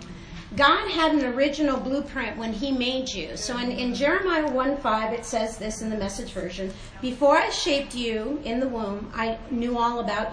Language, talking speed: English, 185 wpm